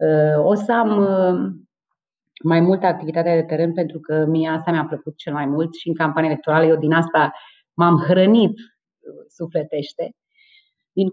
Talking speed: 150 wpm